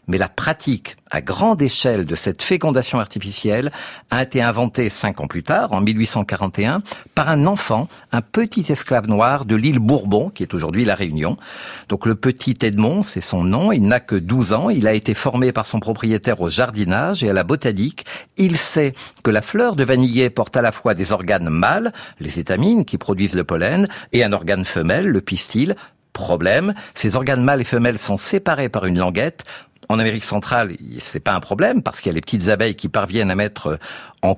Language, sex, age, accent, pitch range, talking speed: French, male, 50-69, French, 105-140 Hz, 200 wpm